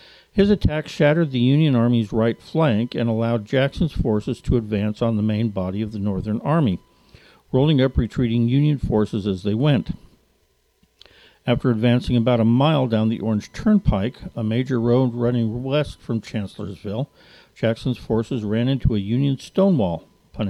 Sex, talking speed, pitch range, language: male, 160 wpm, 115-145 Hz, English